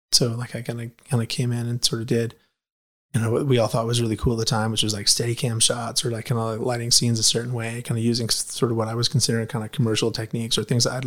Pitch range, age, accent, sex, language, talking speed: 115-130 Hz, 30-49, American, male, English, 300 wpm